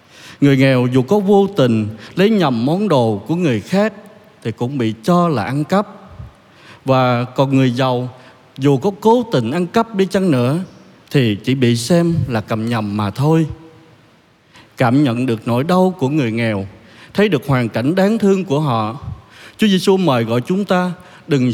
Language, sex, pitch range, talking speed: Vietnamese, male, 120-185 Hz, 180 wpm